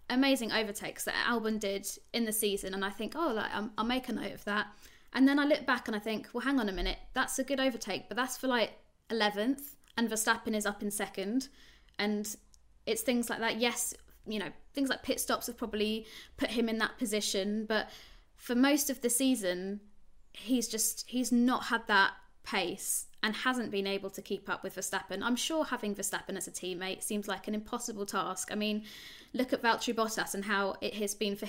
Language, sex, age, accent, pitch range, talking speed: English, female, 20-39, British, 200-245 Hz, 215 wpm